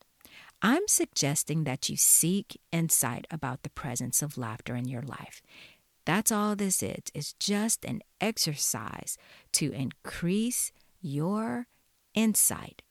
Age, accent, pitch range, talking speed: 50-69, American, 150-220 Hz, 120 wpm